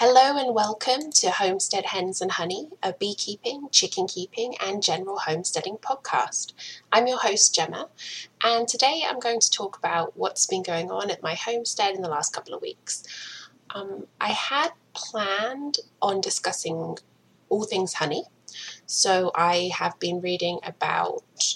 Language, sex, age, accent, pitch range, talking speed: English, female, 20-39, British, 160-215 Hz, 155 wpm